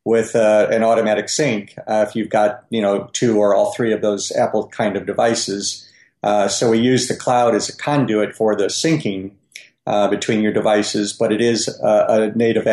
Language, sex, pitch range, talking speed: English, male, 110-125 Hz, 205 wpm